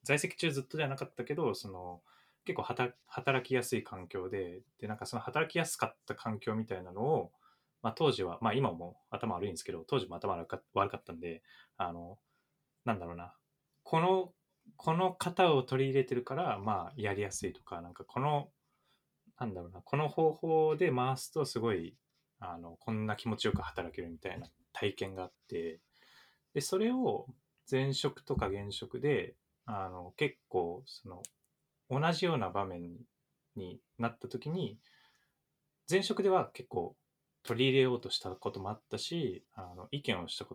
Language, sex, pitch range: Japanese, male, 100-150 Hz